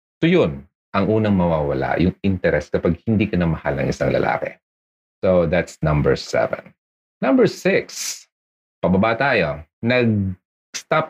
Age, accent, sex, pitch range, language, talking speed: 40-59, native, male, 80-120 Hz, Filipino, 130 wpm